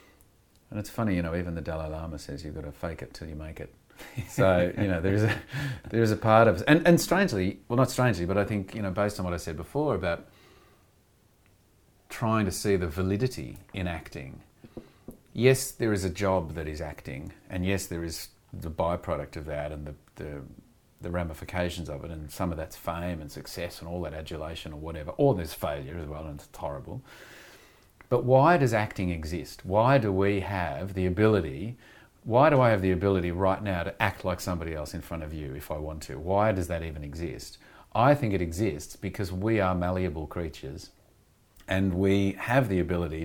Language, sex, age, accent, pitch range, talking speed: English, male, 40-59, Australian, 80-105 Hz, 210 wpm